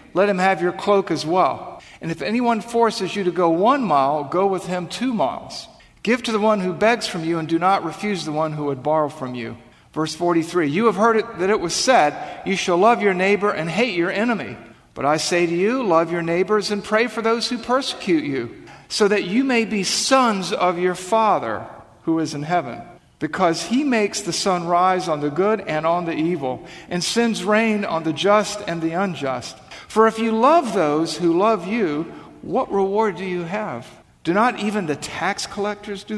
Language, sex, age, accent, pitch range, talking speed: English, male, 50-69, American, 155-215 Hz, 215 wpm